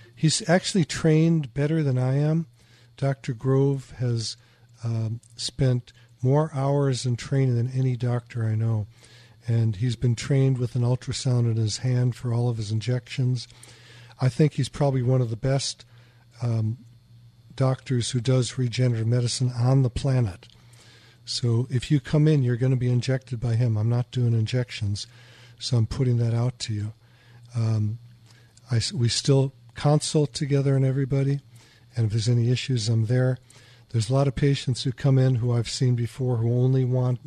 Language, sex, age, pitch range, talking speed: English, male, 50-69, 120-130 Hz, 170 wpm